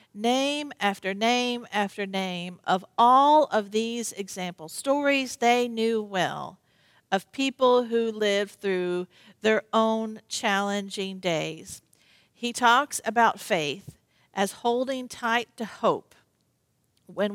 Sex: female